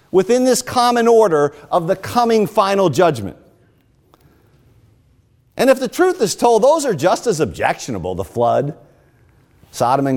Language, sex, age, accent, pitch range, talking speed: English, male, 50-69, American, 125-200 Hz, 140 wpm